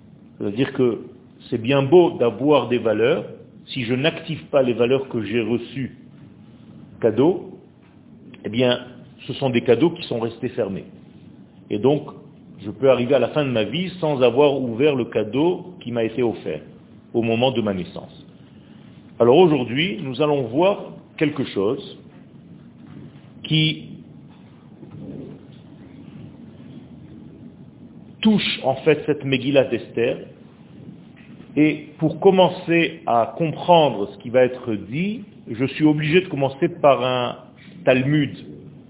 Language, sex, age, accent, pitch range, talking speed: French, male, 50-69, French, 125-155 Hz, 130 wpm